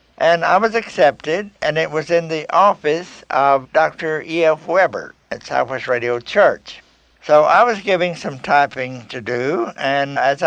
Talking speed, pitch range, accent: 160 wpm, 135-165 Hz, American